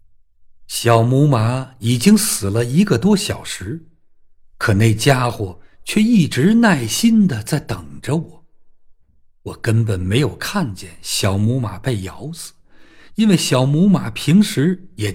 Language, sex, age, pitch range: Chinese, male, 50-69, 95-160 Hz